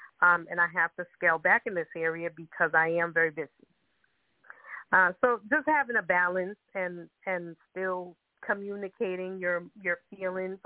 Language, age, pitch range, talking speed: English, 30-49, 175-205 Hz, 160 wpm